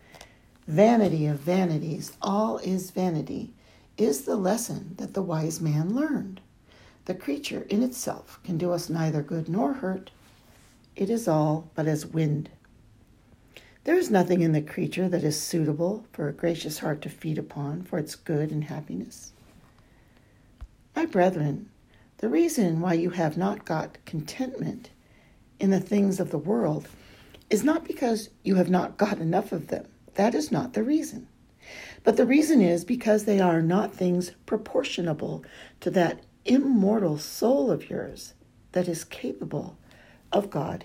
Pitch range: 160-215 Hz